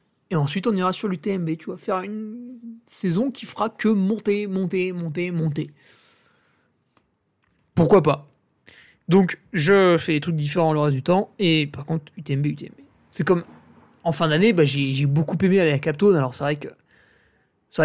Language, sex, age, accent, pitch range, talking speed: French, male, 20-39, French, 150-200 Hz, 180 wpm